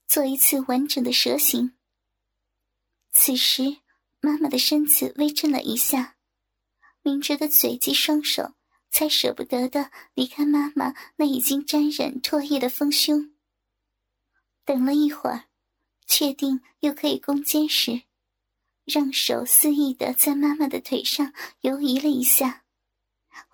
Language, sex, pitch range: Chinese, male, 265-295 Hz